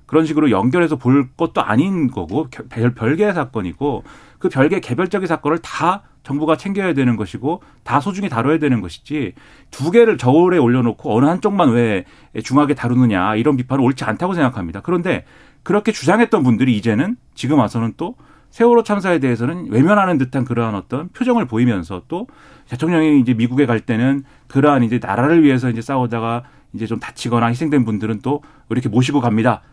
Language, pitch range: Korean, 120-160 Hz